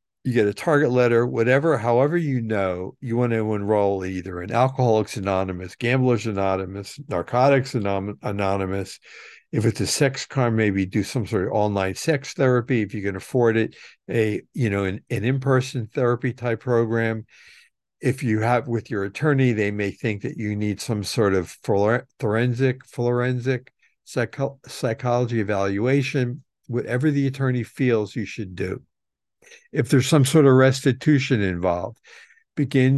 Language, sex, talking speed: English, male, 155 wpm